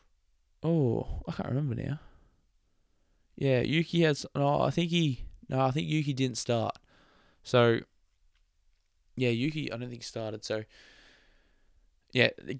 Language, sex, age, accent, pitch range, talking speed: English, male, 20-39, Australian, 105-120 Hz, 140 wpm